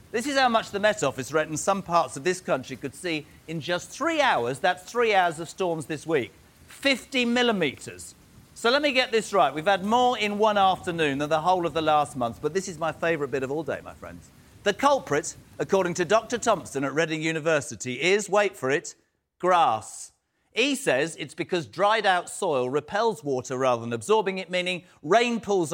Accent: British